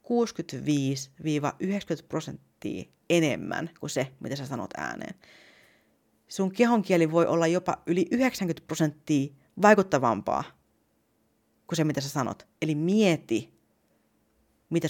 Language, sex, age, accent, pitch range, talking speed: Finnish, female, 30-49, native, 140-205 Hz, 105 wpm